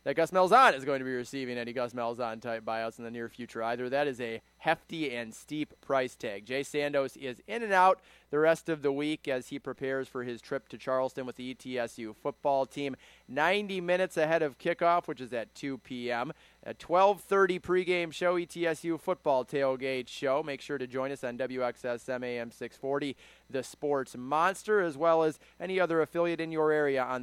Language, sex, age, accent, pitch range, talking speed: English, male, 20-39, American, 125-175 Hz, 195 wpm